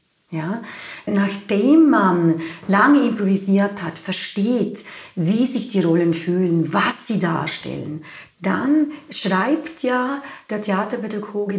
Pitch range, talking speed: 180-225 Hz, 100 wpm